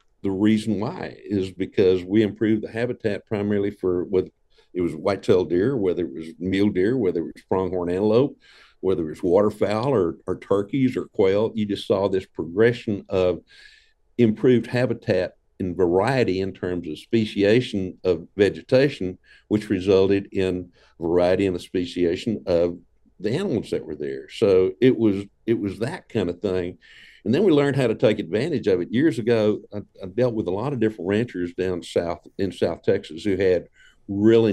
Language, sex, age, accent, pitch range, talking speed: English, male, 60-79, American, 95-120 Hz, 175 wpm